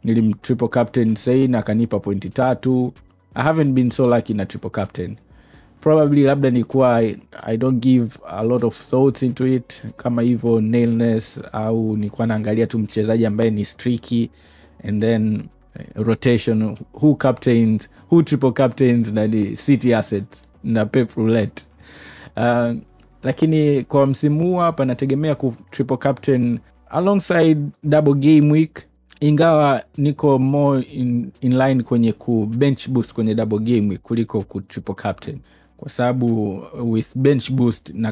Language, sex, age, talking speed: Swahili, male, 20-39, 140 wpm